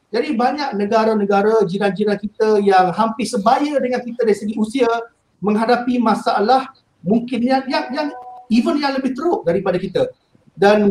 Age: 50-69